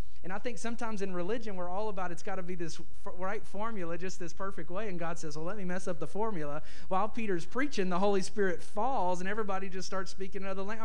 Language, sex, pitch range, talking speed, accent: English, male, 150-220 Hz, 250 wpm, American